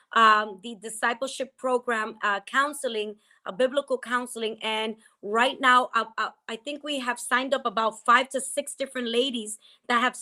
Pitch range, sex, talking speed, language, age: 230-255 Hz, female, 165 wpm, English, 20-39